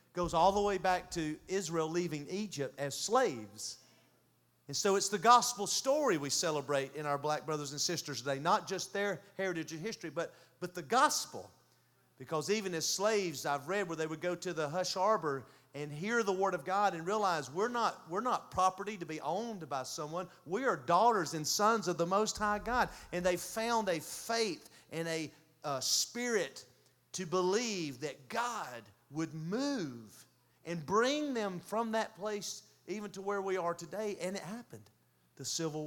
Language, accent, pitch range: English, American, 140-195 Hz